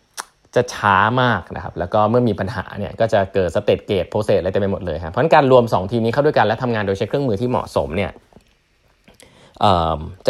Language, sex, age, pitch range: Thai, male, 20-39, 95-125 Hz